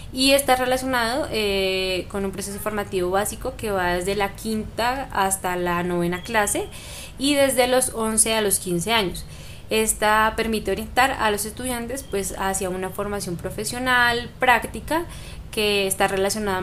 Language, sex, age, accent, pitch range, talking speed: Spanish, female, 10-29, Colombian, 190-225 Hz, 150 wpm